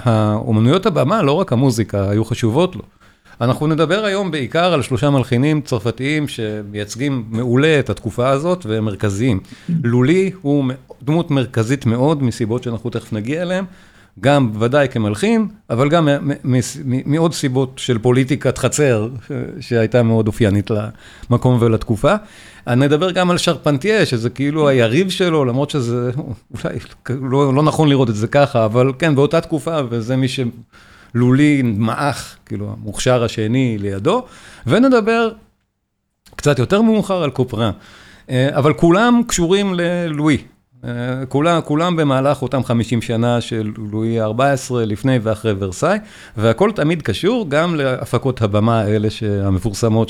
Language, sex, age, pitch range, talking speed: Hebrew, male, 50-69, 115-150 Hz, 130 wpm